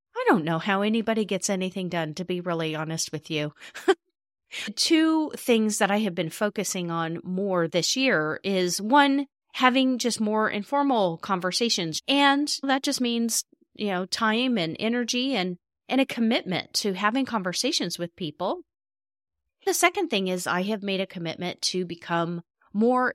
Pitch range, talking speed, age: 180-245 Hz, 160 wpm, 30-49